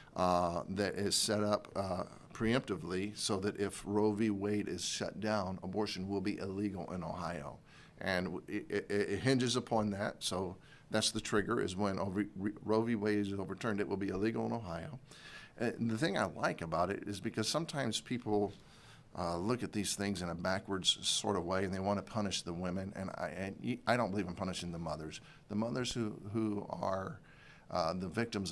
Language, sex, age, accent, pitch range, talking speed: English, male, 50-69, American, 95-110 Hz, 195 wpm